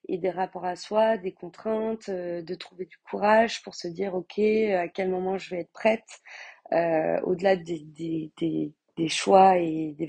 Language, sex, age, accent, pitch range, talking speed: French, female, 30-49, French, 175-210 Hz, 185 wpm